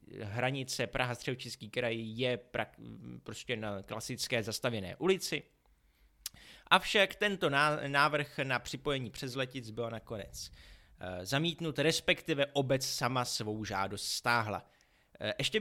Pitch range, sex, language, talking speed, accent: 110-140 Hz, male, Czech, 110 wpm, native